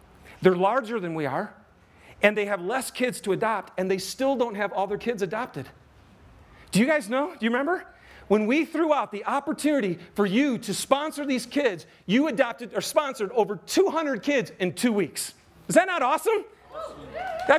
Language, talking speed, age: English, 190 wpm, 40-59